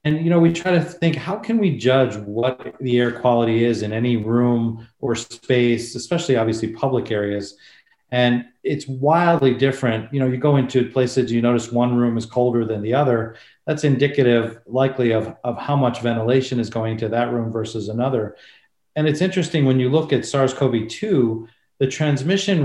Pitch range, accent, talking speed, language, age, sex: 115-145 Hz, American, 185 wpm, English, 40-59, male